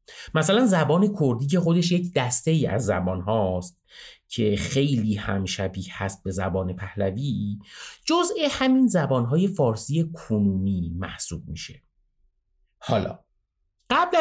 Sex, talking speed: male, 120 wpm